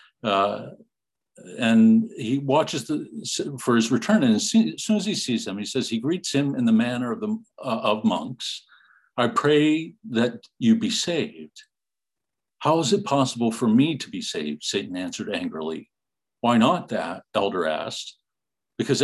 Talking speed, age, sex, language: 170 wpm, 60-79, male, English